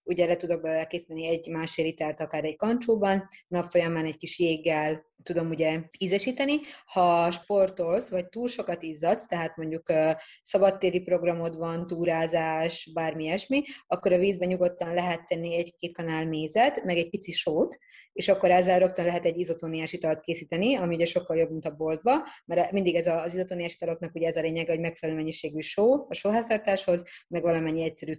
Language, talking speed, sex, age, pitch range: Hungarian, 170 wpm, female, 20-39, 160-185 Hz